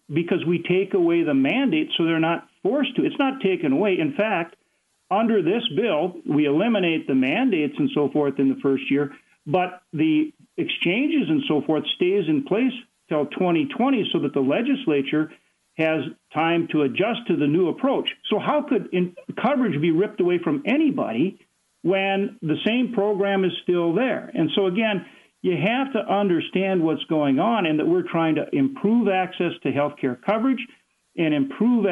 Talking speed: 175 wpm